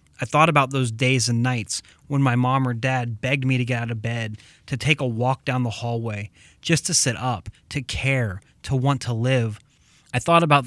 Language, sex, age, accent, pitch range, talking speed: English, male, 20-39, American, 115-135 Hz, 220 wpm